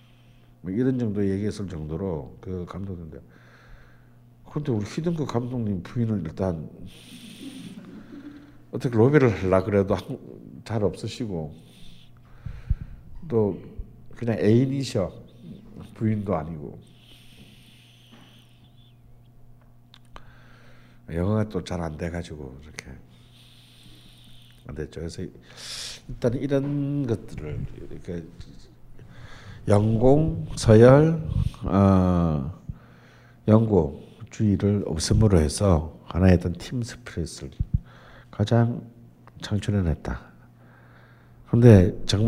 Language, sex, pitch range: Korean, male, 90-120 Hz